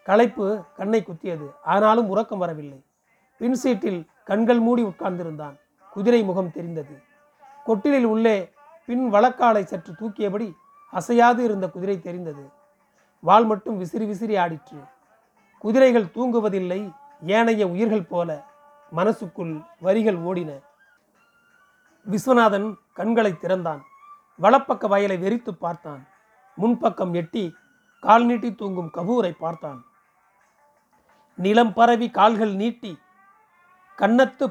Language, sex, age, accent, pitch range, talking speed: Tamil, male, 30-49, native, 190-250 Hz, 95 wpm